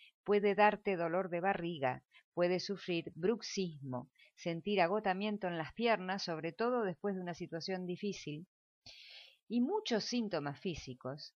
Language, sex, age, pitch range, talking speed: Spanish, female, 50-69, 160-235 Hz, 125 wpm